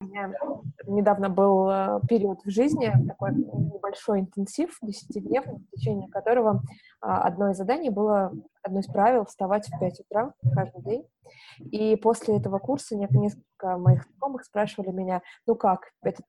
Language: Russian